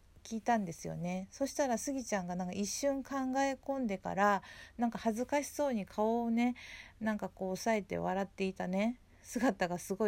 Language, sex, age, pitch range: Japanese, female, 40-59, 175-230 Hz